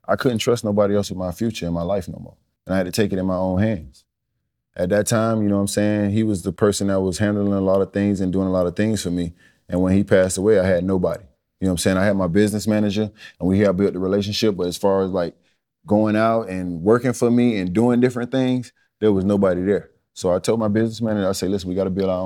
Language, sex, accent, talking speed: English, male, American, 285 wpm